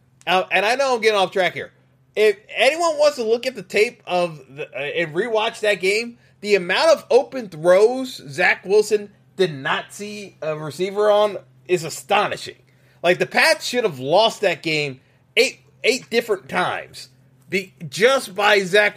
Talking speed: 175 wpm